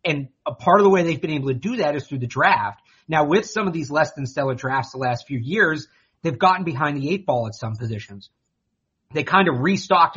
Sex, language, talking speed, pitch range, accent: male, English, 250 wpm, 135-175 Hz, American